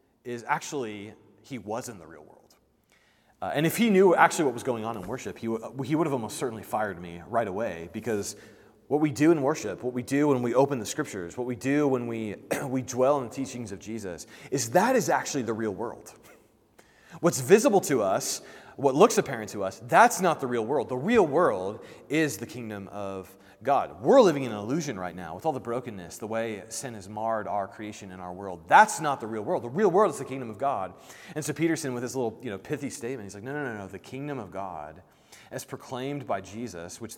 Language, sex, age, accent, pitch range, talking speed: English, male, 30-49, American, 100-140 Hz, 230 wpm